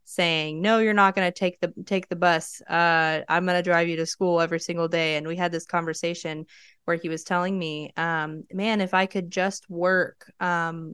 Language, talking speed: English, 220 wpm